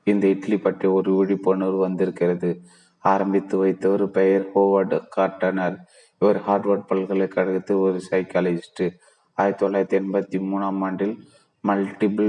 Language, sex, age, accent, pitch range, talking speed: Tamil, male, 30-49, native, 95-100 Hz, 110 wpm